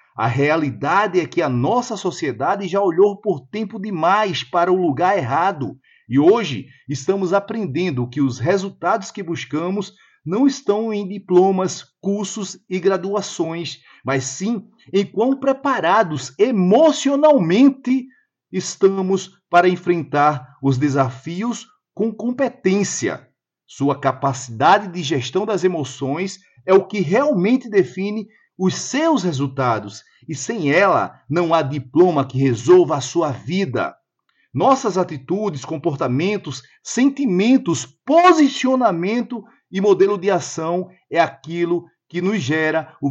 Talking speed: 120 wpm